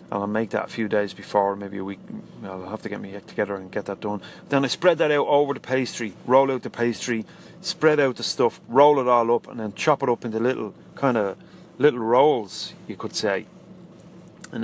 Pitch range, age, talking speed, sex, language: 105-135 Hz, 30-49, 225 wpm, male, English